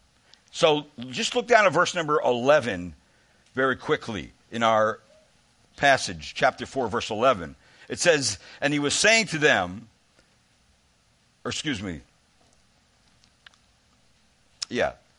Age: 60-79